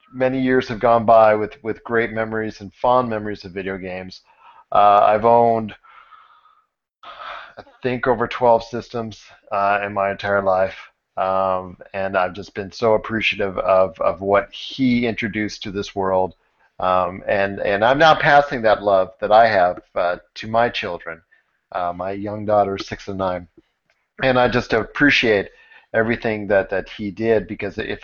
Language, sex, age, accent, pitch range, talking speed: English, male, 40-59, American, 100-120 Hz, 165 wpm